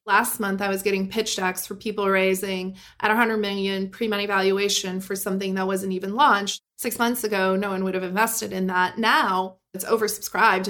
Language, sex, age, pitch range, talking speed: English, female, 30-49, 190-220 Hz, 190 wpm